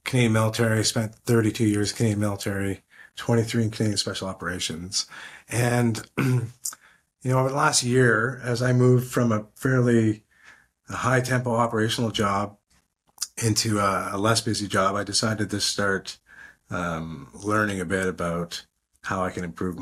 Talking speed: 145 wpm